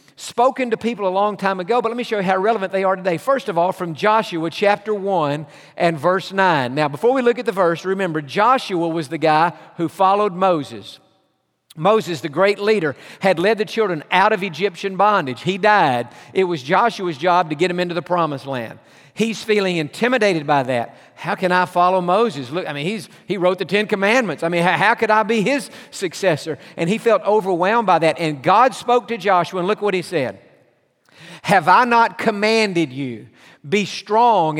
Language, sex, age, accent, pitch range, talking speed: English, male, 50-69, American, 160-215 Hz, 205 wpm